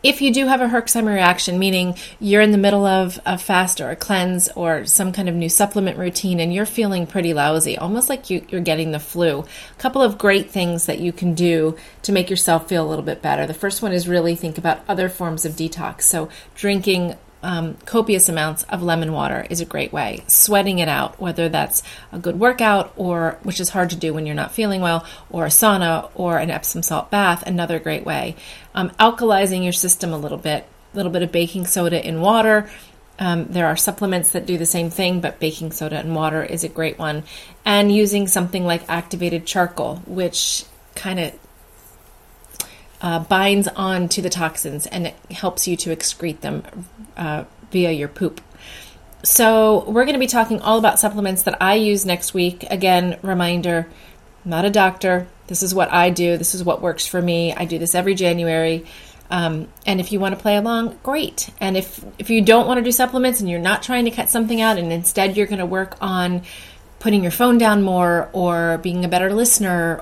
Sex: female